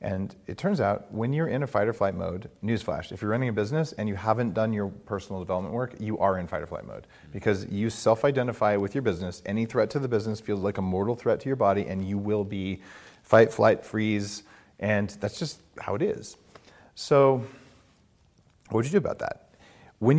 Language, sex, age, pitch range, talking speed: English, male, 40-59, 95-125 Hz, 220 wpm